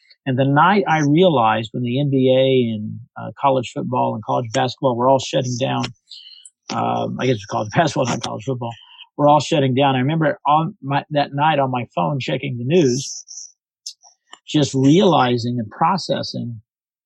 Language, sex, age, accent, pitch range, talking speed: English, male, 50-69, American, 125-160 Hz, 180 wpm